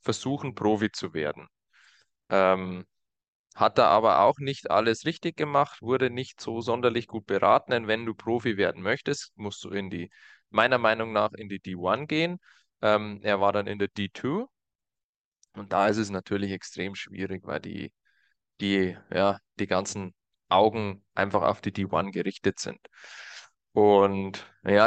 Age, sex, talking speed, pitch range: 20-39, male, 155 wpm, 100-125 Hz